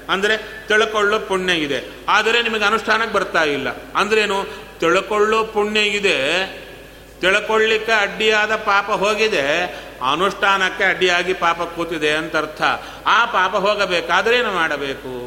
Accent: native